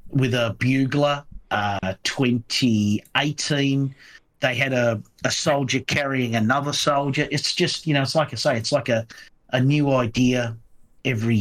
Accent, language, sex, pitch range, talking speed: Australian, English, male, 115-140 Hz, 145 wpm